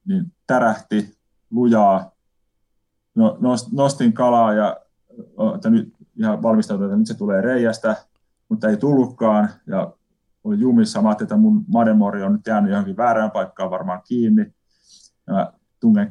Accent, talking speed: native, 135 wpm